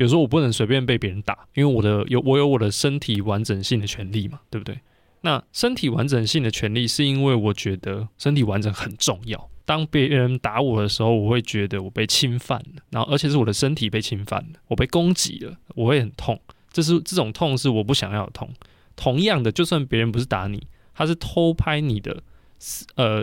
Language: Chinese